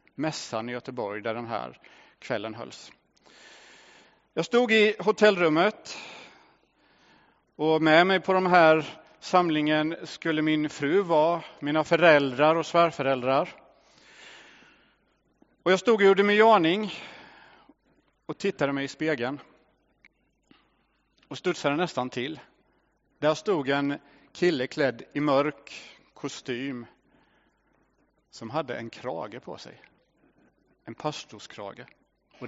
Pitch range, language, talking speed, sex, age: 140-185 Hz, English, 105 wpm, male, 40-59